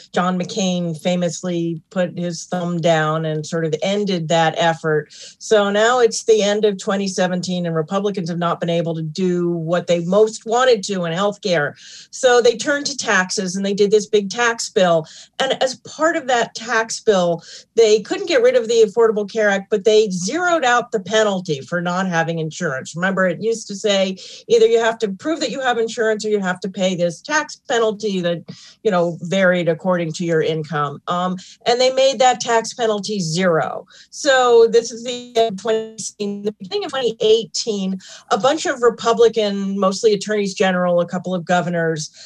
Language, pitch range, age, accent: English, 180-245 Hz, 40-59, American